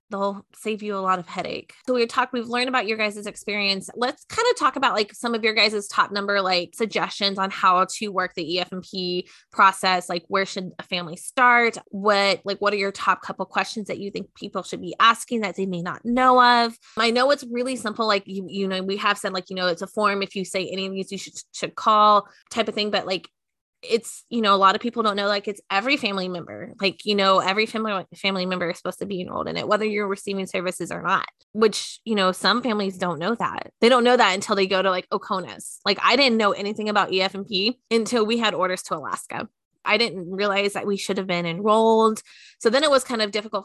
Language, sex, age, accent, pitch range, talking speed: English, female, 20-39, American, 190-225 Hz, 245 wpm